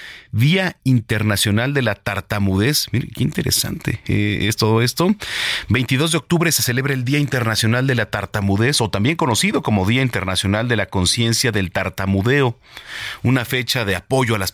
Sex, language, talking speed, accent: male, Spanish, 165 wpm, Mexican